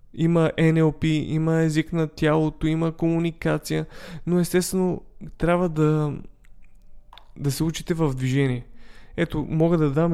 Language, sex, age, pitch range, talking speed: Bulgarian, male, 20-39, 140-165 Hz, 125 wpm